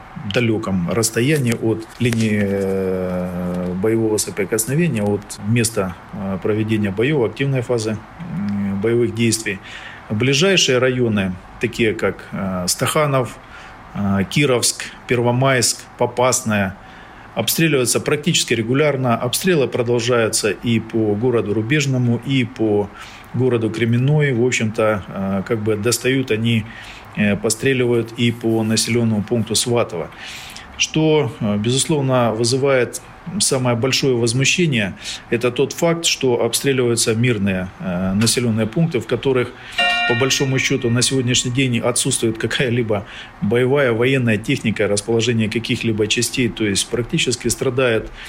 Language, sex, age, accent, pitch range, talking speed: Russian, male, 40-59, native, 110-130 Hz, 105 wpm